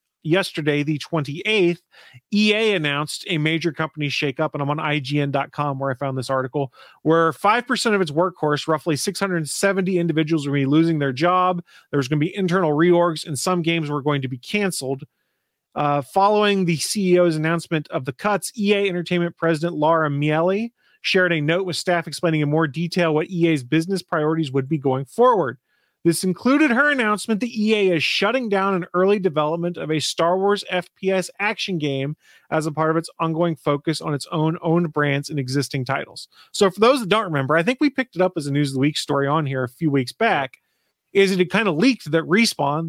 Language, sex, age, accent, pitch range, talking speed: English, male, 30-49, American, 150-190 Hz, 195 wpm